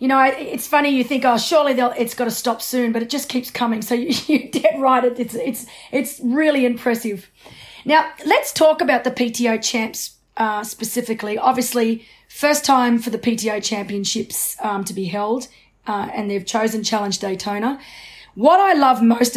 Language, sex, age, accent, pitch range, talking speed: English, female, 30-49, Australian, 215-255 Hz, 175 wpm